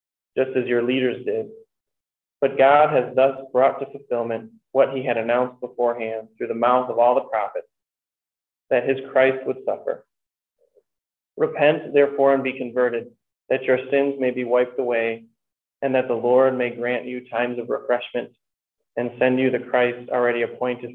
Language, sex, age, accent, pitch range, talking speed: English, male, 20-39, American, 120-130 Hz, 165 wpm